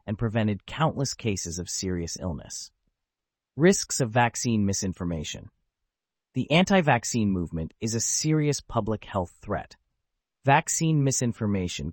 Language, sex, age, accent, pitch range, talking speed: English, male, 30-49, American, 95-130 Hz, 110 wpm